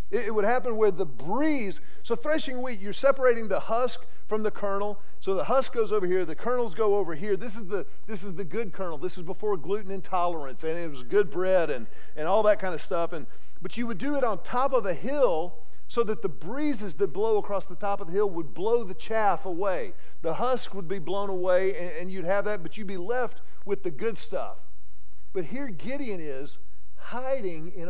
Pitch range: 175-235 Hz